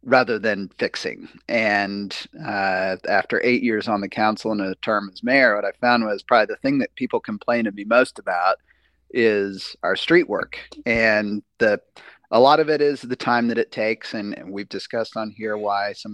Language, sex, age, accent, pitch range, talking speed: English, male, 30-49, American, 105-130 Hz, 200 wpm